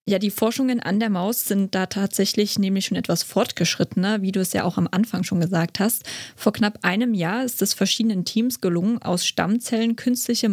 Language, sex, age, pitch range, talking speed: German, female, 20-39, 180-225 Hz, 200 wpm